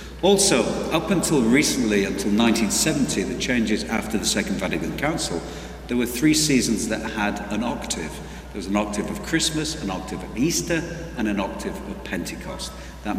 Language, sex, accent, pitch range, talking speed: English, male, British, 100-115 Hz, 170 wpm